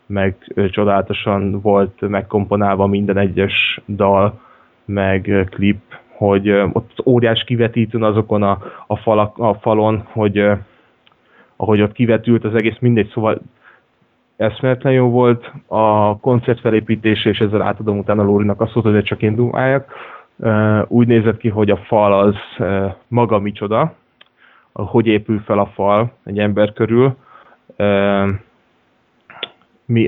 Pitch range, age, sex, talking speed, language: 100-110 Hz, 20-39, male, 125 wpm, Hungarian